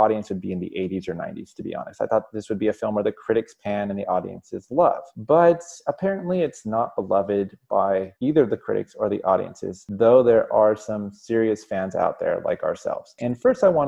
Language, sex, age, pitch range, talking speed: English, male, 20-39, 100-130 Hz, 225 wpm